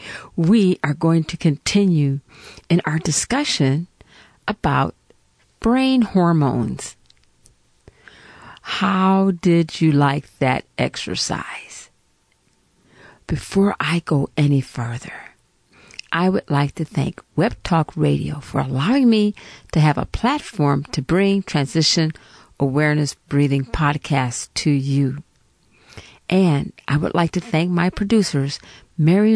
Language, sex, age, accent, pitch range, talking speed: English, female, 50-69, American, 145-195 Hz, 110 wpm